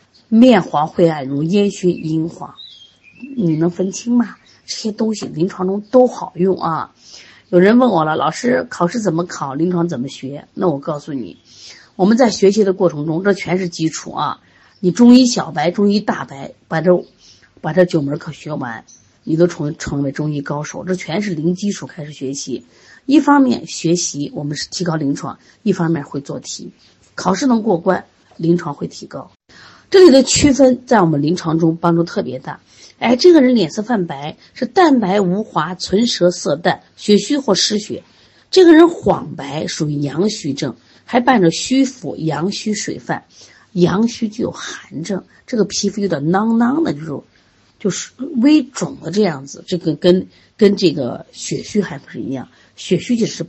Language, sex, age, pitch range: Chinese, female, 30-49, 160-220 Hz